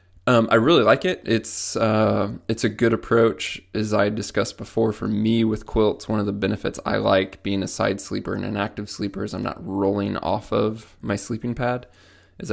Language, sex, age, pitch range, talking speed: English, male, 20-39, 95-110 Hz, 205 wpm